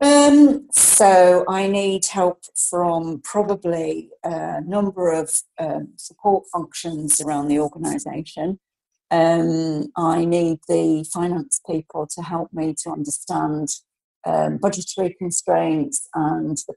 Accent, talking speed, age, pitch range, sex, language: British, 115 wpm, 50-69, 155-190 Hz, female, English